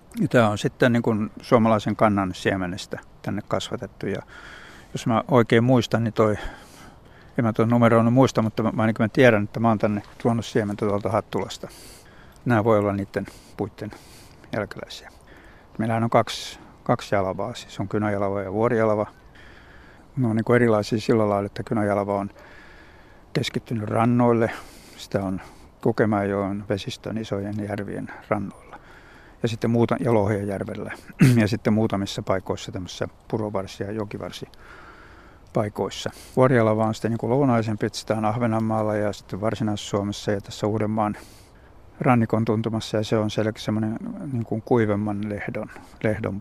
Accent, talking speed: native, 135 wpm